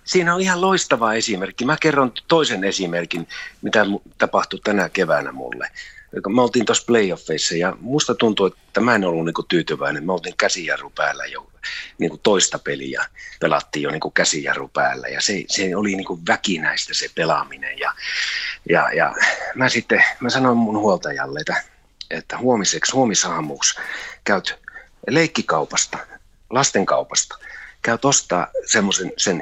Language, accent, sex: Finnish, native, male